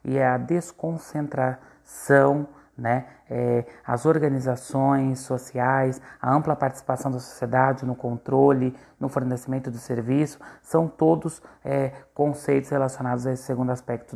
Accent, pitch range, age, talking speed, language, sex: Brazilian, 120-140 Hz, 30-49, 120 wpm, Portuguese, male